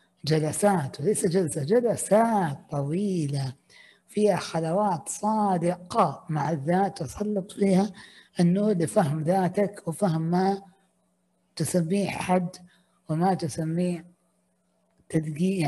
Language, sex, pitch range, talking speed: Arabic, female, 155-195 Hz, 85 wpm